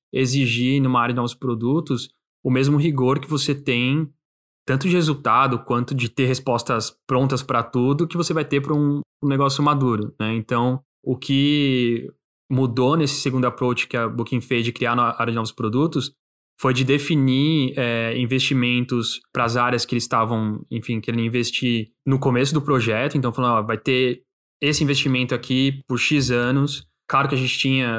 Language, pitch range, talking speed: Portuguese, 120-140 Hz, 180 wpm